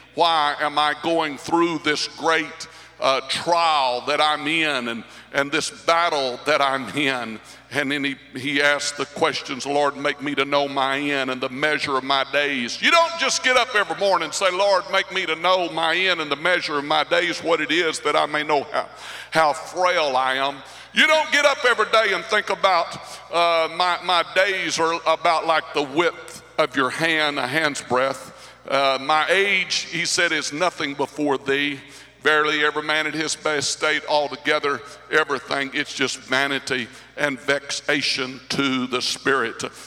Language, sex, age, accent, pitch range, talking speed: English, male, 60-79, American, 140-170 Hz, 185 wpm